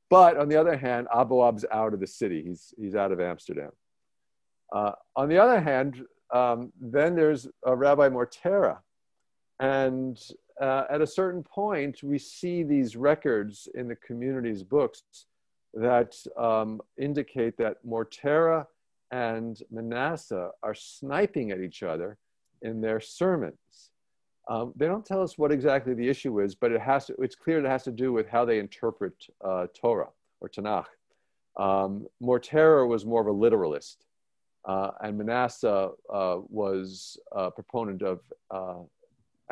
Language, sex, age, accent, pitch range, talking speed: English, male, 50-69, American, 105-140 Hz, 145 wpm